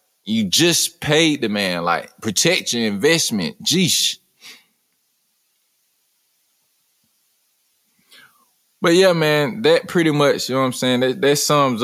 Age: 20-39